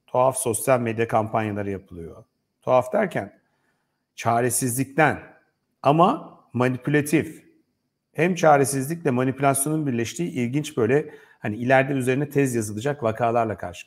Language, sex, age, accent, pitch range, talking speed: Turkish, male, 50-69, native, 110-135 Hz, 100 wpm